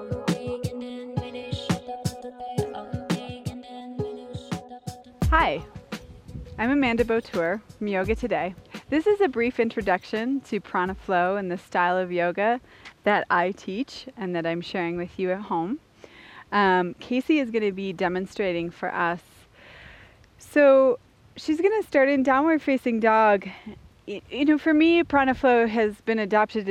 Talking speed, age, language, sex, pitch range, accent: 130 wpm, 30-49, English, female, 185-240 Hz, American